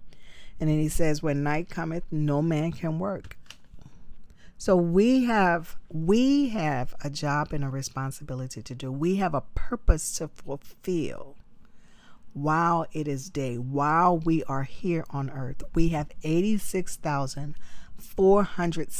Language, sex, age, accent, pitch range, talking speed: English, female, 50-69, American, 140-180 Hz, 145 wpm